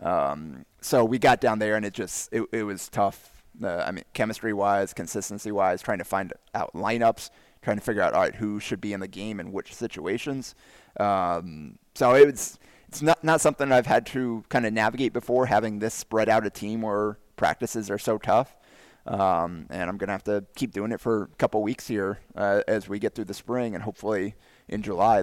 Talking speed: 215 wpm